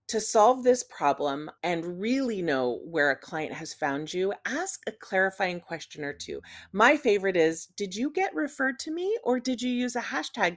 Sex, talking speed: female, 195 wpm